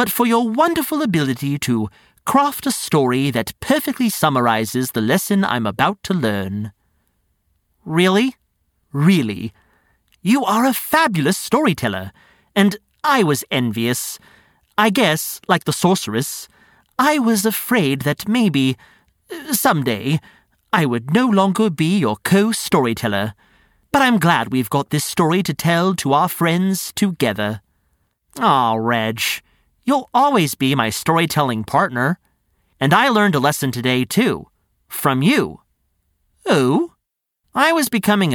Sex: male